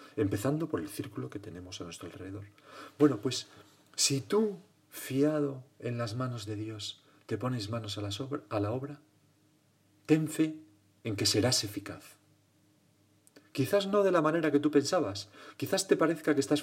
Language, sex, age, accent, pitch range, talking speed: Spanish, male, 40-59, Spanish, 105-150 Hz, 170 wpm